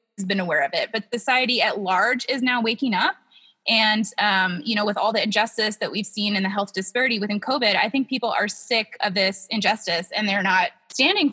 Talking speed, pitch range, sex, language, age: 215 wpm, 195-230 Hz, female, English, 20-39